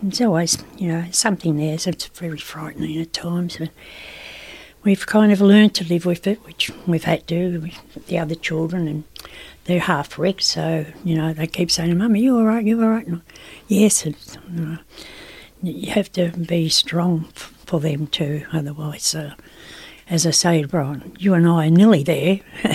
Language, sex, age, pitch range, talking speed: English, female, 60-79, 160-190 Hz, 195 wpm